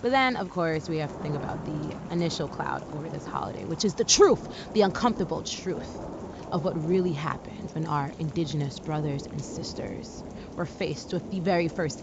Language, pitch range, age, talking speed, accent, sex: English, 165-230 Hz, 20-39, 190 wpm, American, female